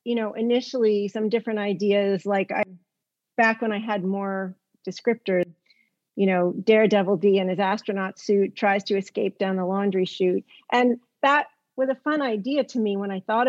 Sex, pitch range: female, 195-235 Hz